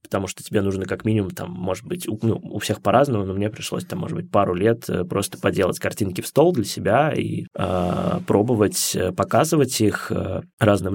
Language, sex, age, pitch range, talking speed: Russian, male, 20-39, 105-130 Hz, 185 wpm